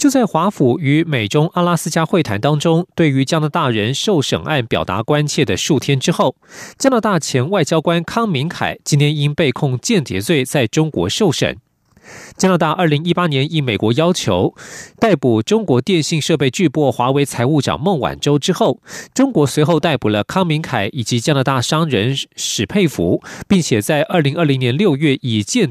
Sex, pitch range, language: male, 130-175 Hz, Chinese